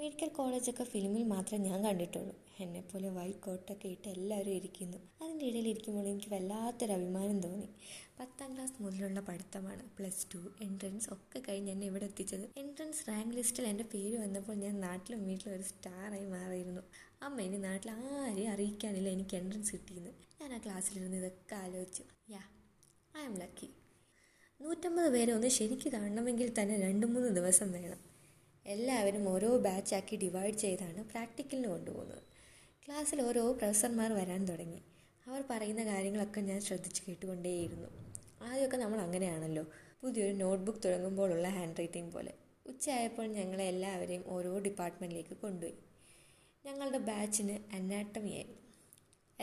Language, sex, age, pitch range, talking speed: Malayalam, female, 20-39, 185-230 Hz, 125 wpm